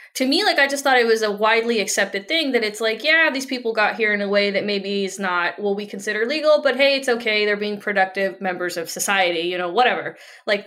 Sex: female